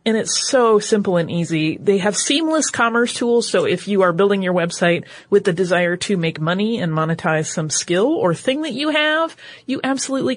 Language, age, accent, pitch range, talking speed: English, 30-49, American, 170-235 Hz, 205 wpm